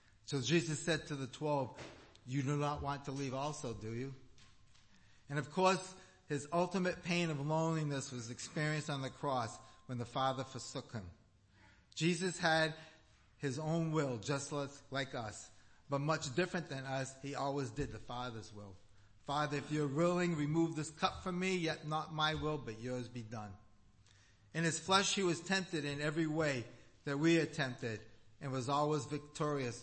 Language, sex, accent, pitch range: English, male, American, 120-155 Hz